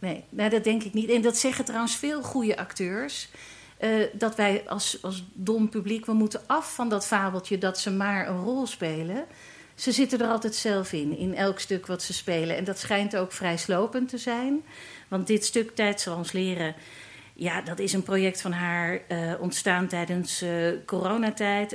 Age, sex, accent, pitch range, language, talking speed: 50-69, female, Dutch, 180-225 Hz, Dutch, 195 wpm